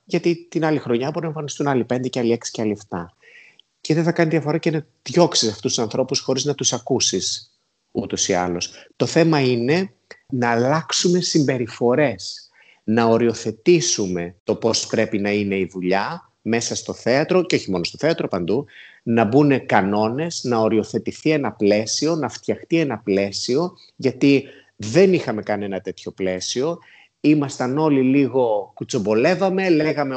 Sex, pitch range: male, 110-160 Hz